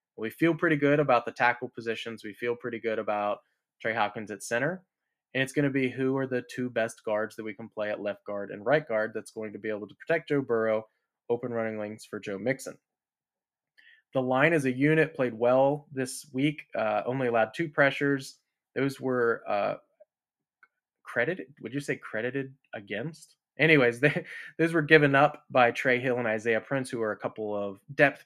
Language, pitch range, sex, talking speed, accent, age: English, 110-140 Hz, male, 195 wpm, American, 20-39